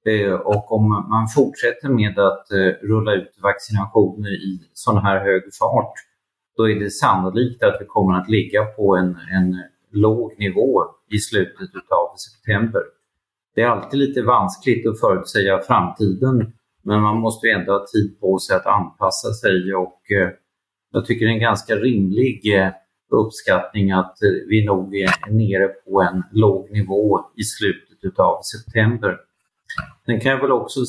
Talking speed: 150 wpm